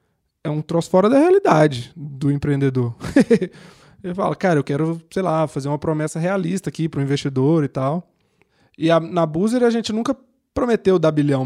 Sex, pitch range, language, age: male, 145-195 Hz, Portuguese, 20-39